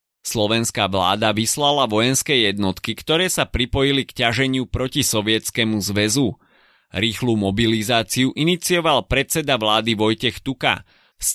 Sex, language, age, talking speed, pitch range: male, Slovak, 30-49, 110 wpm, 110-140 Hz